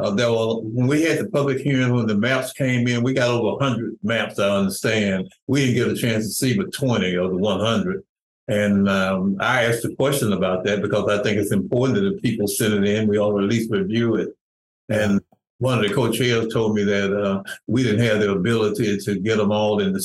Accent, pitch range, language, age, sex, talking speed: American, 105-120 Hz, English, 60-79, male, 235 wpm